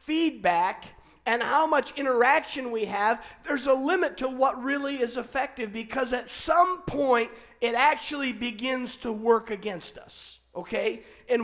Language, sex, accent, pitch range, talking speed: English, male, American, 220-275 Hz, 145 wpm